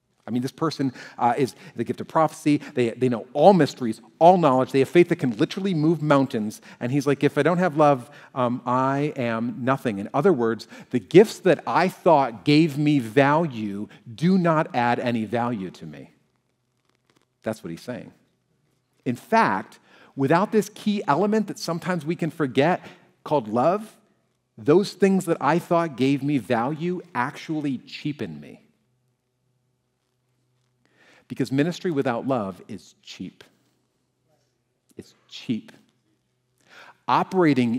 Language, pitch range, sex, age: English, 120-165 Hz, male, 40-59